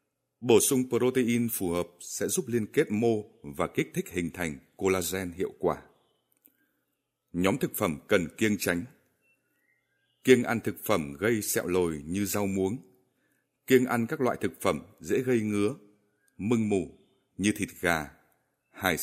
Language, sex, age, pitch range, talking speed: Vietnamese, male, 60-79, 90-125 Hz, 155 wpm